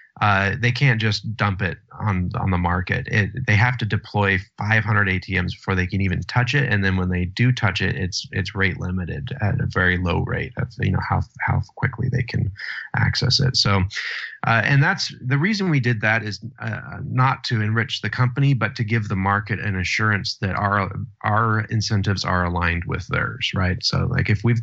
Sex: male